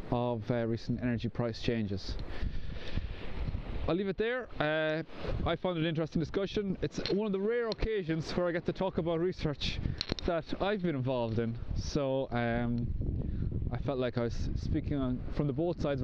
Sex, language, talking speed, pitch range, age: male, English, 175 wpm, 110-130 Hz, 20-39